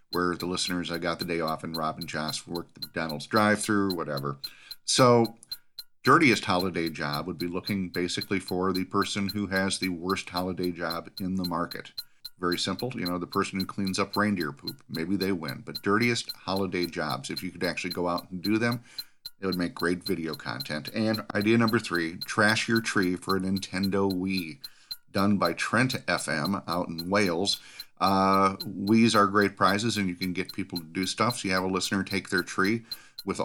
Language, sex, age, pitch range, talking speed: English, male, 40-59, 90-105 Hz, 200 wpm